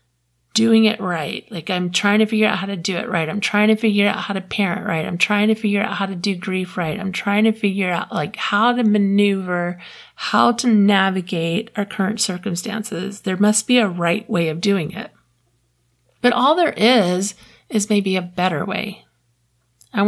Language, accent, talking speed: English, American, 200 wpm